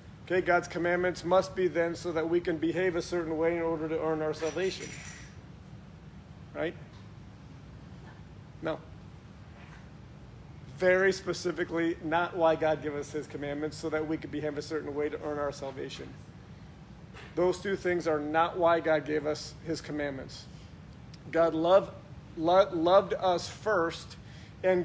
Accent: American